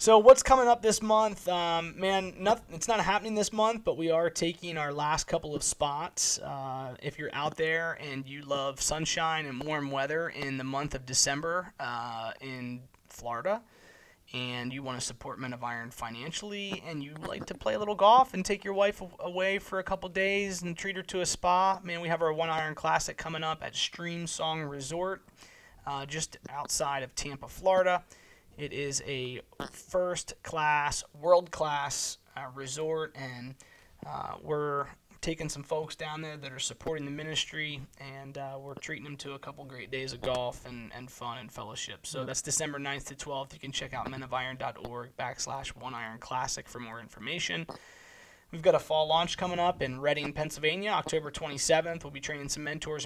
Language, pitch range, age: English, 135-175 Hz, 20-39